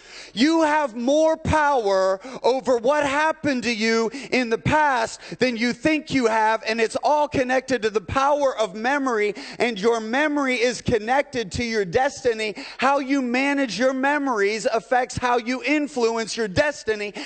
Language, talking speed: English, 155 wpm